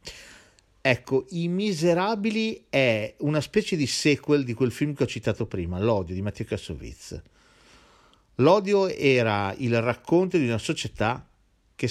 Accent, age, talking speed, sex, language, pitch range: native, 50-69, 135 wpm, male, Italian, 90-135 Hz